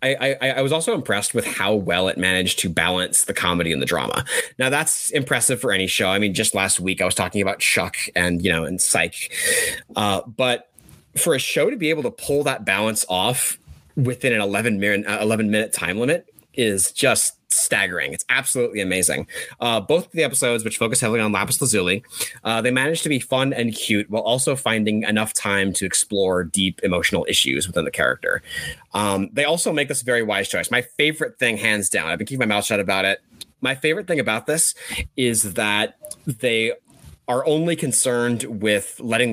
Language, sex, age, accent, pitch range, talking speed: English, male, 30-49, American, 95-130 Hz, 200 wpm